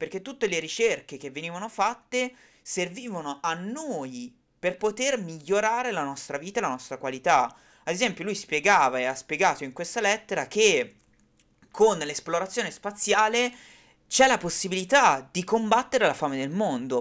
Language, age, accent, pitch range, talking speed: Italian, 30-49, native, 140-195 Hz, 150 wpm